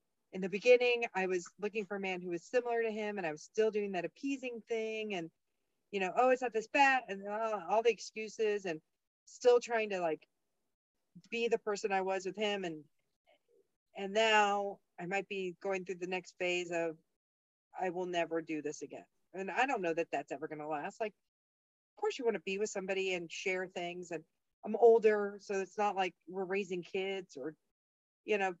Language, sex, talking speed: English, female, 210 wpm